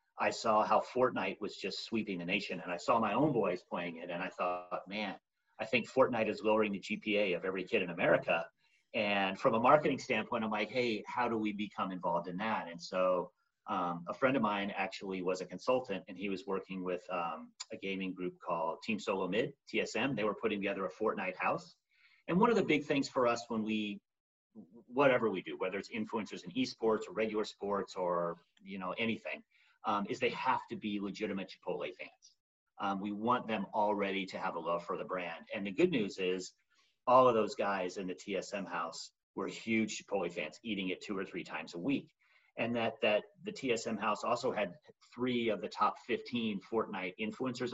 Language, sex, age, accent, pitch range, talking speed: English, male, 40-59, American, 95-115 Hz, 210 wpm